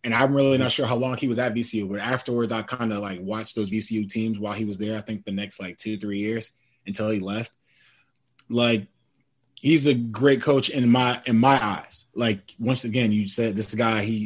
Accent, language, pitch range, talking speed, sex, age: American, English, 110-130 Hz, 225 wpm, male, 20-39